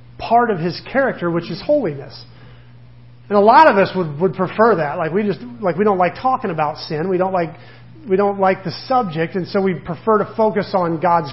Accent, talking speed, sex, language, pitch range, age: American, 220 wpm, male, English, 150-210 Hz, 40-59